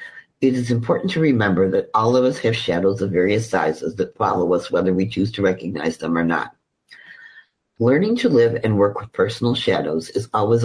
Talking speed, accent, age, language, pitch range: 195 wpm, American, 50-69, English, 95-120 Hz